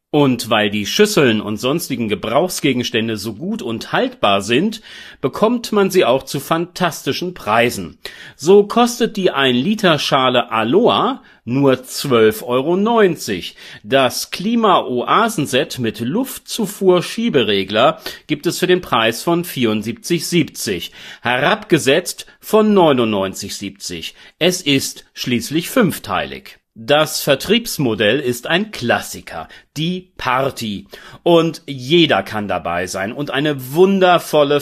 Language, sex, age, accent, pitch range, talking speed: German, male, 40-59, German, 120-185 Hz, 105 wpm